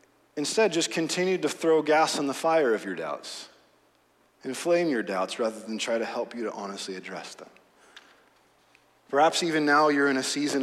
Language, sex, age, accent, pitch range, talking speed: English, male, 30-49, American, 110-145 Hz, 180 wpm